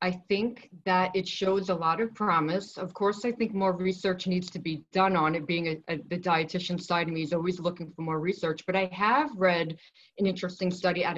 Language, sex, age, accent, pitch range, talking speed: English, female, 40-59, American, 165-200 Hz, 220 wpm